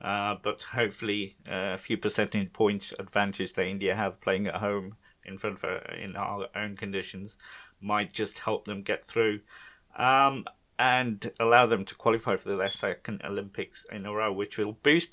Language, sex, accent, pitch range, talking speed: English, male, British, 100-120 Hz, 165 wpm